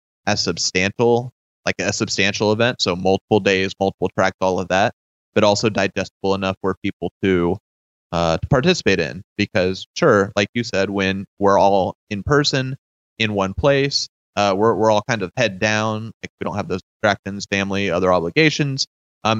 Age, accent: 30-49, American